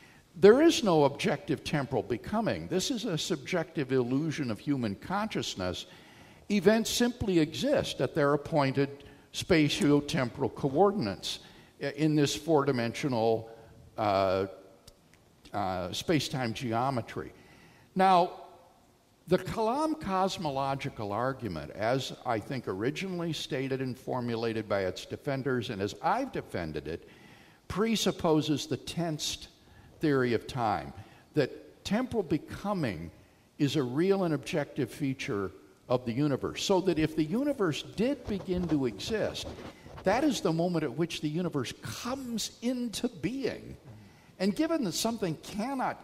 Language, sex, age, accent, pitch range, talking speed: English, male, 60-79, American, 125-190 Hz, 120 wpm